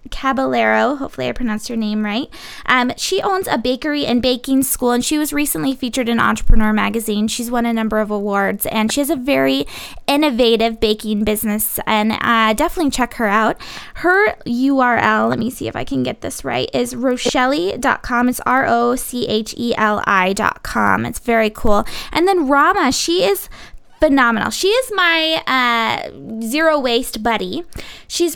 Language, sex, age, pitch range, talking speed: English, female, 20-39, 225-285 Hz, 160 wpm